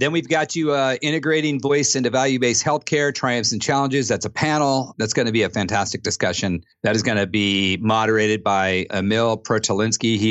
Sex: male